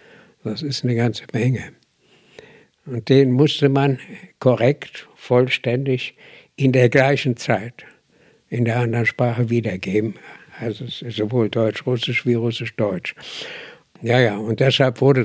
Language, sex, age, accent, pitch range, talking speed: German, male, 60-79, German, 115-140 Hz, 125 wpm